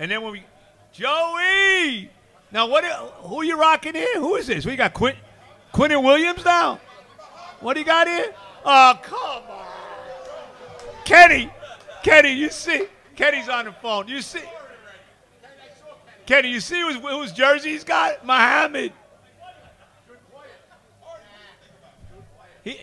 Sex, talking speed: male, 130 wpm